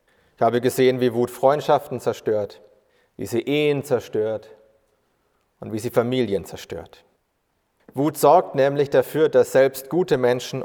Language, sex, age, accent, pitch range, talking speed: German, male, 30-49, German, 125-200 Hz, 135 wpm